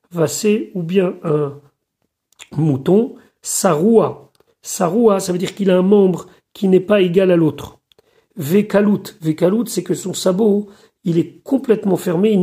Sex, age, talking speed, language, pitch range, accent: male, 40-59, 145 wpm, French, 170-210 Hz, French